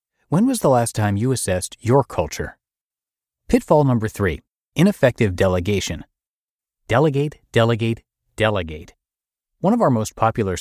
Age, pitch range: 30-49, 95-125 Hz